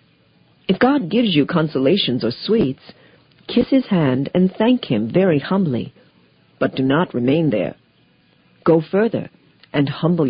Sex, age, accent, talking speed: female, 50-69, American, 140 wpm